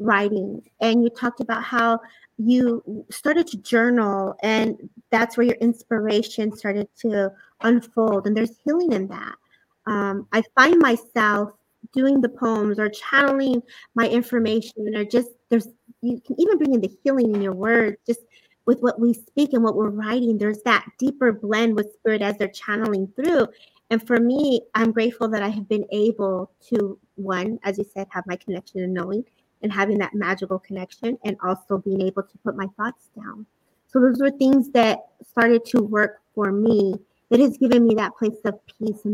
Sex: female